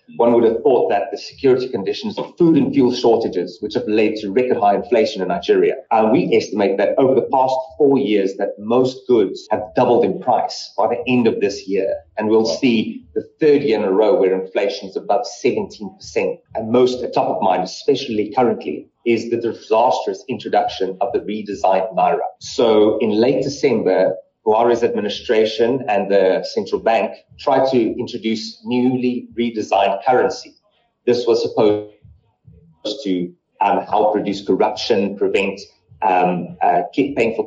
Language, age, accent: English, 30-49, British